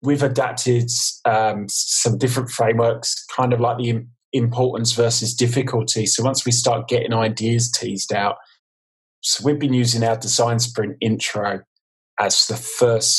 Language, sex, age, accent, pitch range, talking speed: English, male, 20-39, British, 110-125 Hz, 150 wpm